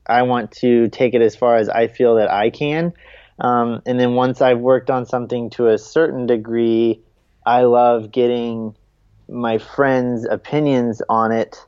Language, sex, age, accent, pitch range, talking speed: English, male, 20-39, American, 110-125 Hz, 170 wpm